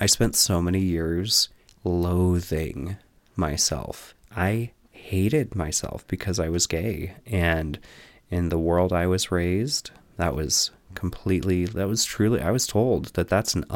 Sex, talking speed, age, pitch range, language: male, 140 wpm, 30-49, 90-110 Hz, English